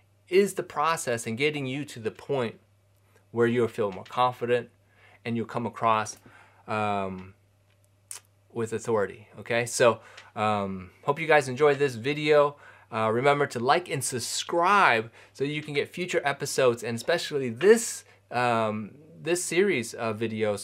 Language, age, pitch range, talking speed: English, 20-39, 100-130 Hz, 145 wpm